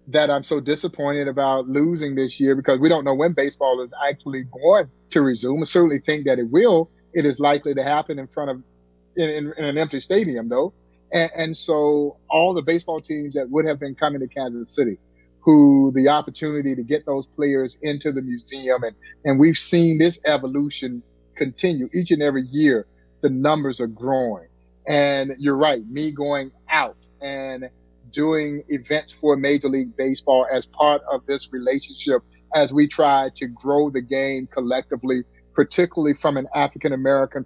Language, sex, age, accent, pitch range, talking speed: English, male, 30-49, American, 130-150 Hz, 175 wpm